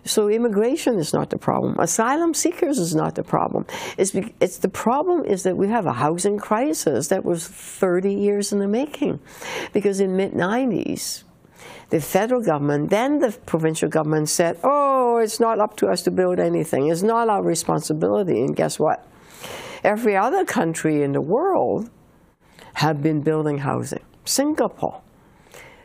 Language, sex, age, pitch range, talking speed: English, female, 60-79, 170-230 Hz, 160 wpm